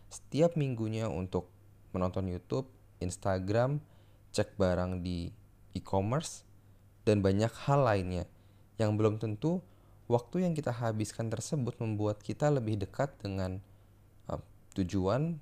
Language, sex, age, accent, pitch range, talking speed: Indonesian, male, 20-39, native, 100-115 Hz, 115 wpm